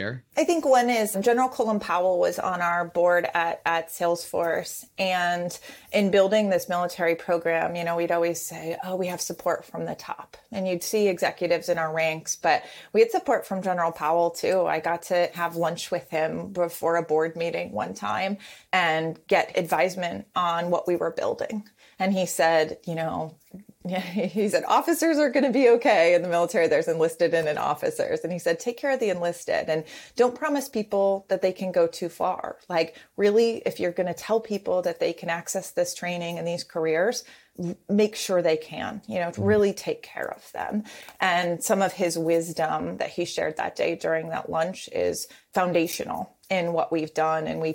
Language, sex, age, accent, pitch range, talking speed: English, female, 30-49, American, 165-215 Hz, 195 wpm